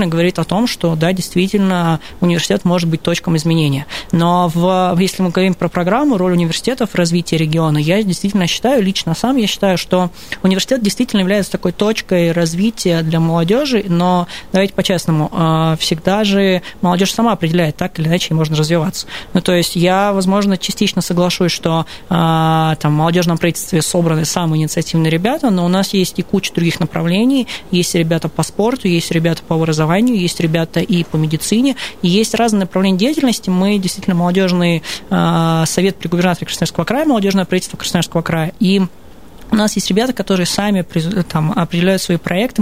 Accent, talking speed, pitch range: native, 165 wpm, 170-195 Hz